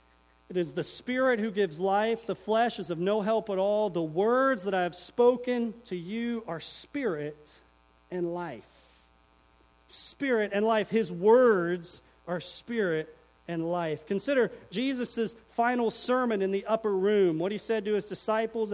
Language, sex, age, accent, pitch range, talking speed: English, male, 40-59, American, 160-220 Hz, 160 wpm